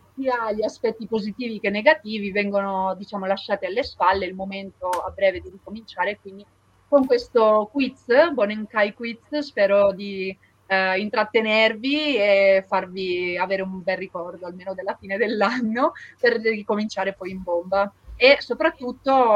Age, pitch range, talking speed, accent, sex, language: 30-49, 185-230 Hz, 140 wpm, native, female, Italian